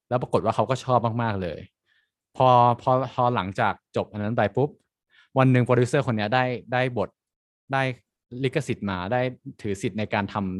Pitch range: 100-125 Hz